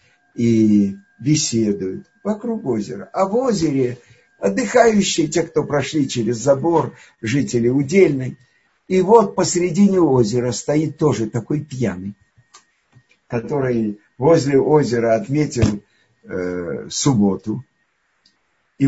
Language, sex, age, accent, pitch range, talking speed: Russian, male, 50-69, native, 115-190 Hz, 95 wpm